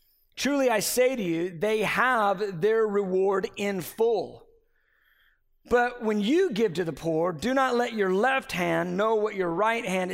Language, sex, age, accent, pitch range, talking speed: English, male, 50-69, American, 180-235 Hz, 170 wpm